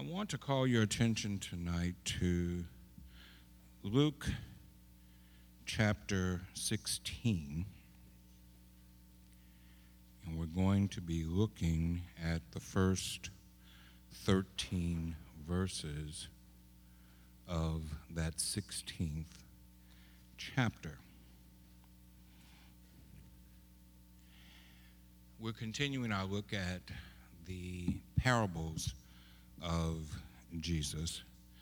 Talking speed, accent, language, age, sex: 65 wpm, American, English, 60-79, male